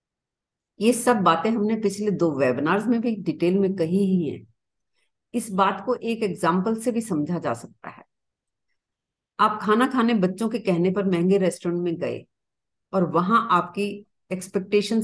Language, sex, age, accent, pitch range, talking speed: Hindi, female, 50-69, native, 170-220 Hz, 160 wpm